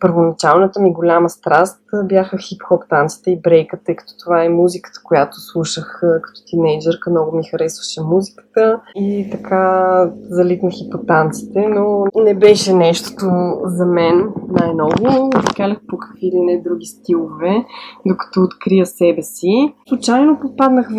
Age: 20-39